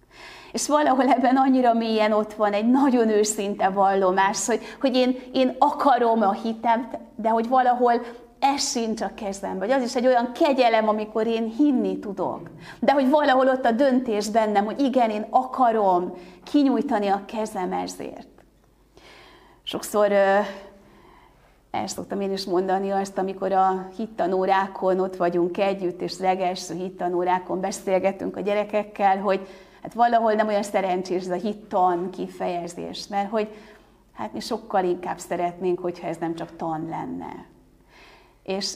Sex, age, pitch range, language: female, 30-49, 190-235 Hz, Hungarian